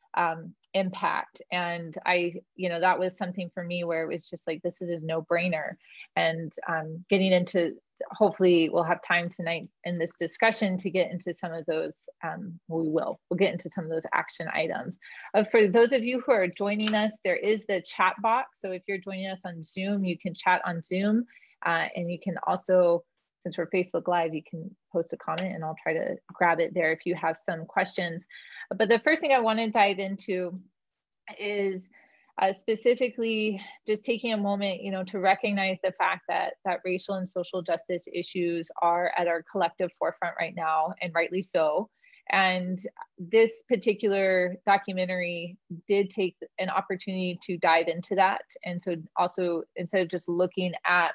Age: 30-49